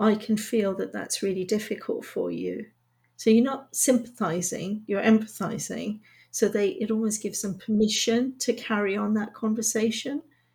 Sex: female